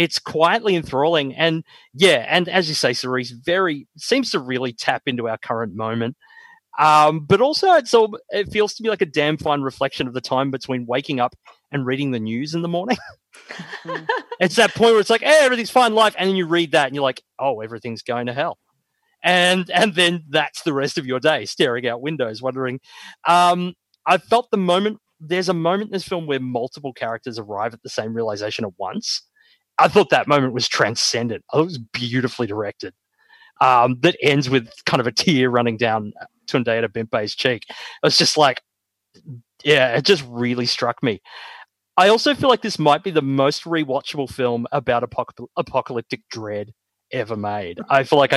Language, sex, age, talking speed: English, male, 30-49, 195 wpm